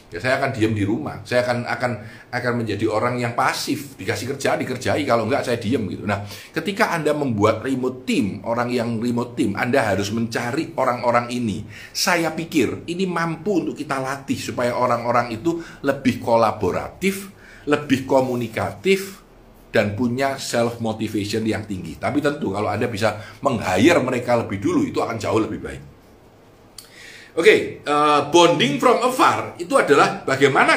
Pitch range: 110-150 Hz